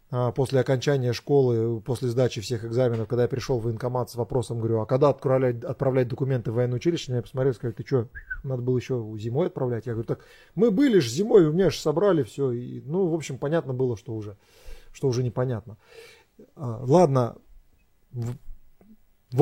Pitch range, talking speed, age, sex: 115-135 Hz, 175 wpm, 20-39, male